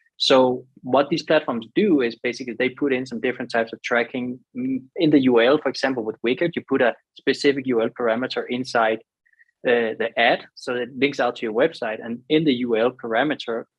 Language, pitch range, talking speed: English, 115-135 Hz, 190 wpm